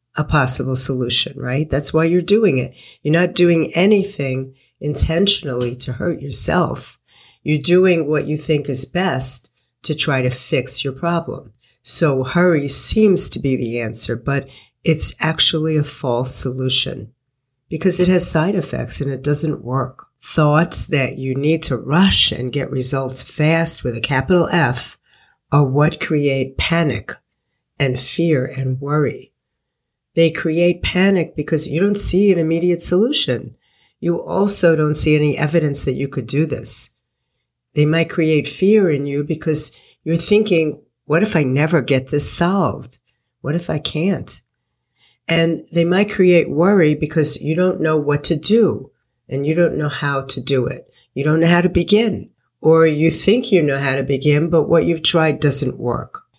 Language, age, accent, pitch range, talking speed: English, 50-69, American, 135-170 Hz, 165 wpm